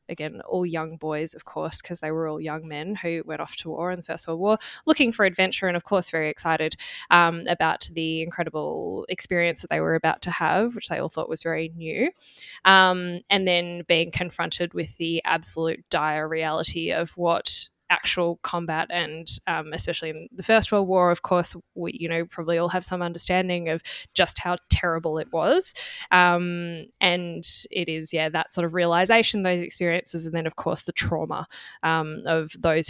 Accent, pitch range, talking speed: Australian, 165-190 Hz, 195 wpm